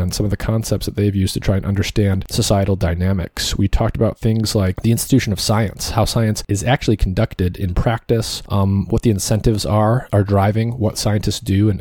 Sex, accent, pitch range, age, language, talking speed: male, American, 100-115 Hz, 30-49, English, 210 wpm